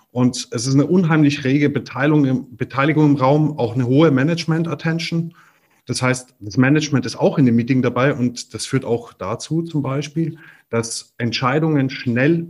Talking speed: 170 wpm